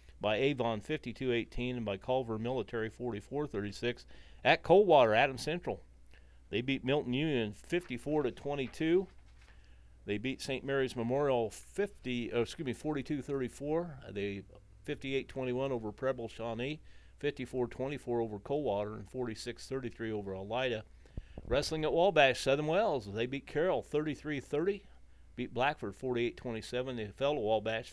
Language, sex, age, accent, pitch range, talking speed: English, male, 40-59, American, 105-135 Hz, 120 wpm